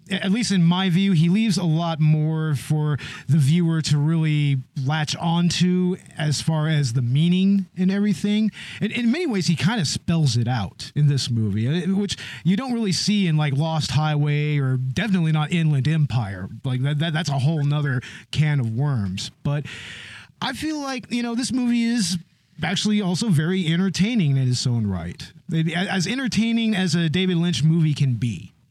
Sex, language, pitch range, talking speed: male, English, 145-190 Hz, 180 wpm